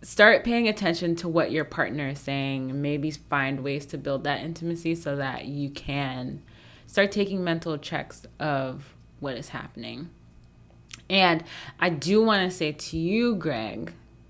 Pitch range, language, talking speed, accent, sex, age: 135-165 Hz, English, 155 wpm, American, female, 20-39